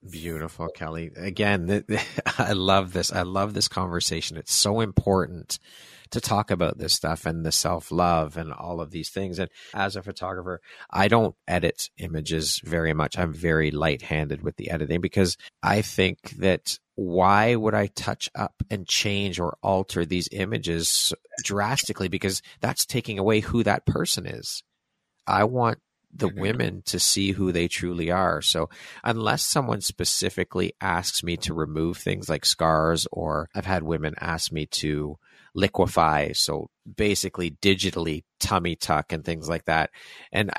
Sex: male